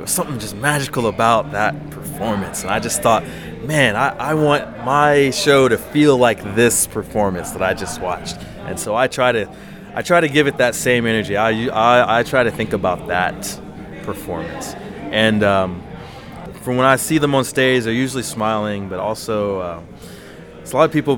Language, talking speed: English, 195 wpm